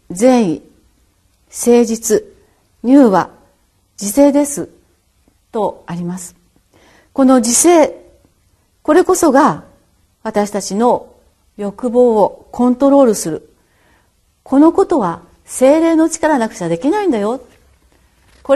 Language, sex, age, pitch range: Japanese, female, 40-59, 195-275 Hz